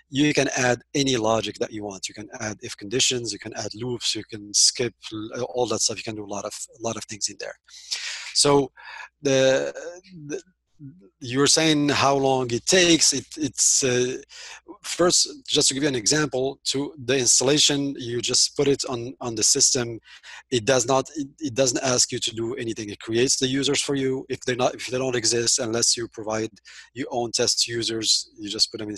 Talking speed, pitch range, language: 210 wpm, 110-135 Hz, English